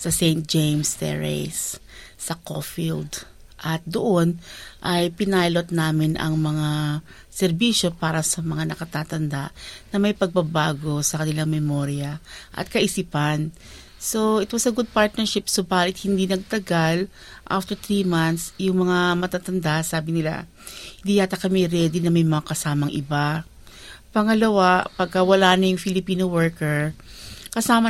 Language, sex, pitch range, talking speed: Filipino, female, 155-195 Hz, 125 wpm